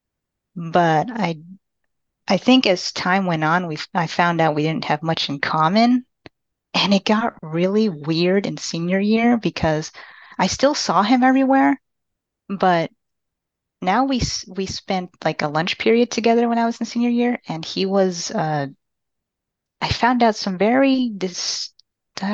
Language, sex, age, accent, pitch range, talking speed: English, female, 30-49, American, 155-200 Hz, 160 wpm